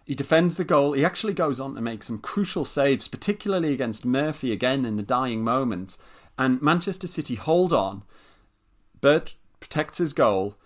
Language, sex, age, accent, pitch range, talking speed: English, male, 30-49, British, 115-160 Hz, 170 wpm